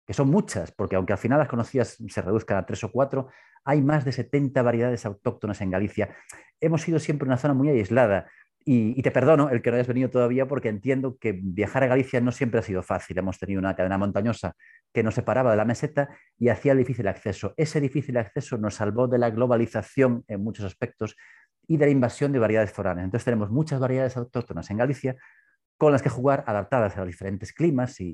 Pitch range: 100-130 Hz